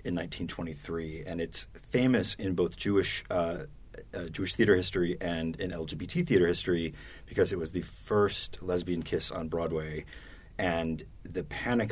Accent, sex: American, male